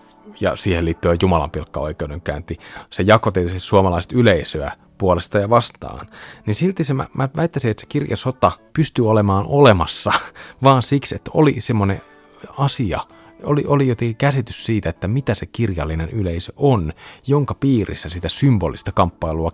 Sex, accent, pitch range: male, native, 85-125 Hz